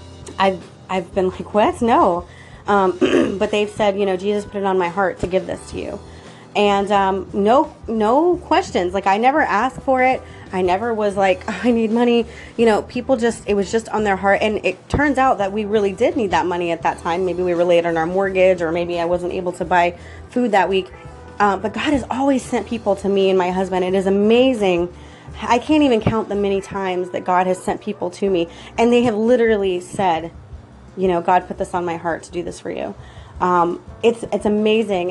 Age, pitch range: 30-49, 180-215 Hz